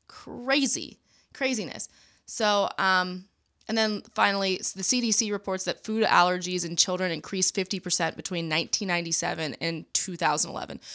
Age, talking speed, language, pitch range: 20-39, 125 wpm, English, 175-225 Hz